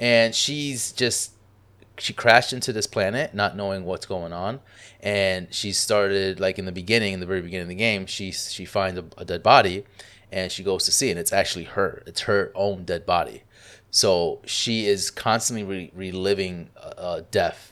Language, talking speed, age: English, 195 wpm, 20-39